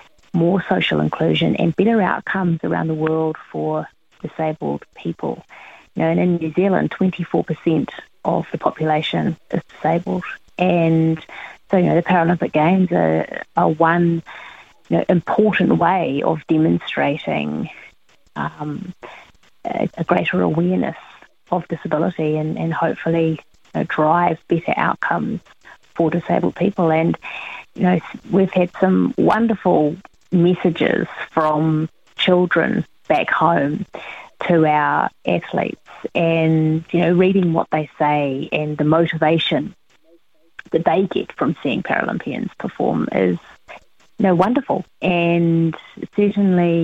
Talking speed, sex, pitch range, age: 125 wpm, female, 155-180 Hz, 30-49